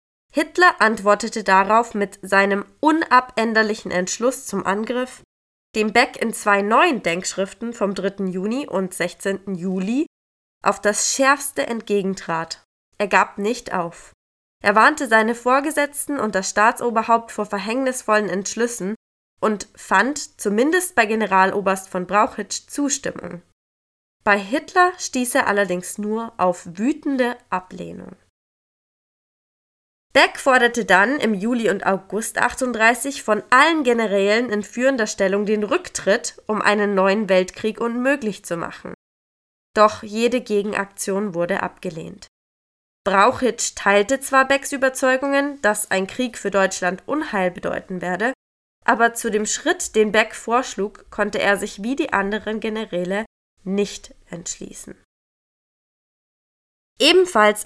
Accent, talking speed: German, 120 wpm